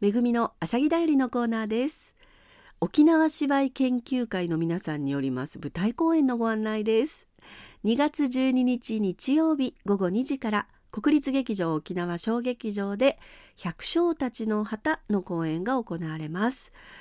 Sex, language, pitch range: female, Japanese, 190-265 Hz